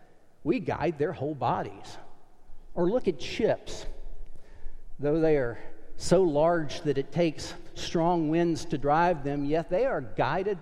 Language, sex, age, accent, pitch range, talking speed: English, male, 50-69, American, 120-165 Hz, 145 wpm